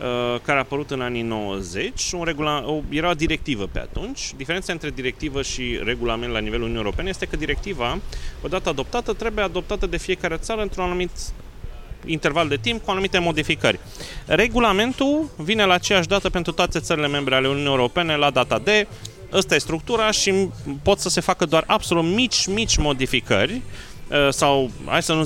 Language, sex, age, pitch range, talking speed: Romanian, male, 30-49, 140-190 Hz, 170 wpm